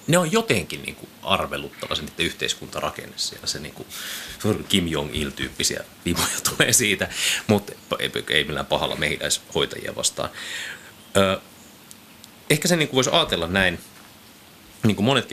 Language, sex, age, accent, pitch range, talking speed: Finnish, male, 30-49, native, 80-105 Hz, 110 wpm